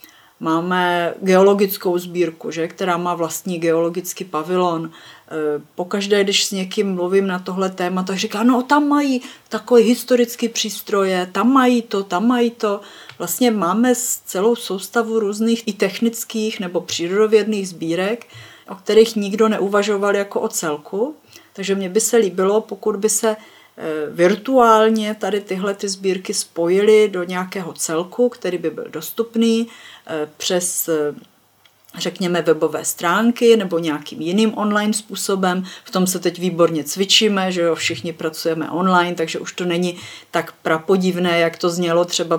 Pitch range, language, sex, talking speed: 170-215 Hz, Czech, female, 145 wpm